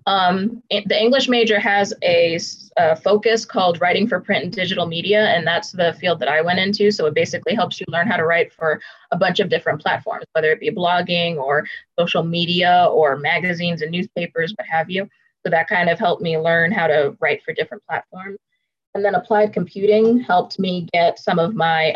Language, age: English, 20-39